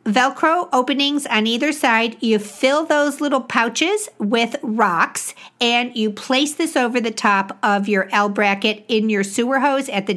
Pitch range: 205-275 Hz